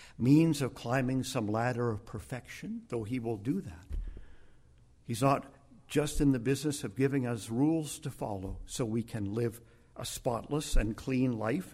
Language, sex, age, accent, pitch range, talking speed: English, male, 50-69, American, 105-140 Hz, 170 wpm